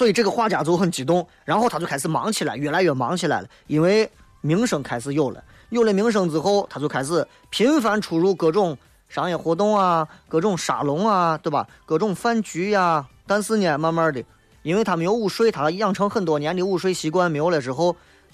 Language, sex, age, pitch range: Chinese, male, 30-49, 150-210 Hz